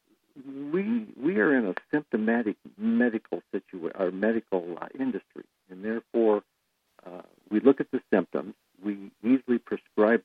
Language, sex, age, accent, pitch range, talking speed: English, male, 50-69, American, 105-135 Hz, 135 wpm